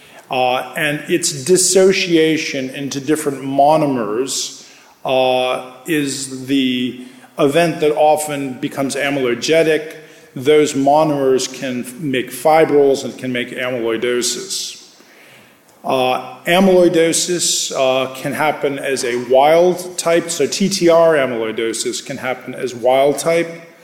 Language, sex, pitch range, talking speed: English, male, 130-155 Hz, 105 wpm